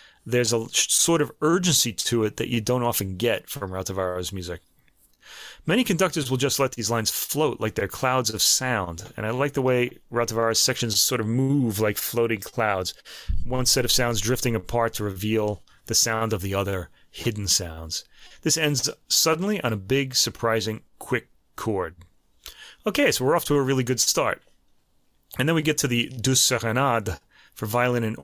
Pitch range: 105-130 Hz